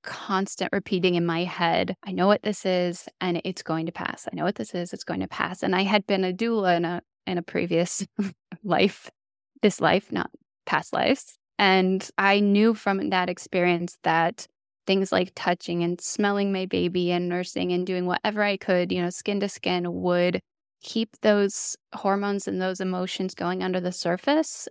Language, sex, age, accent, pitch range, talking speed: English, female, 10-29, American, 180-215 Hz, 190 wpm